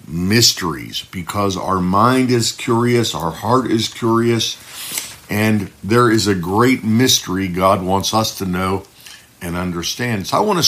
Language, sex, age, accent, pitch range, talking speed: English, male, 60-79, American, 95-125 Hz, 150 wpm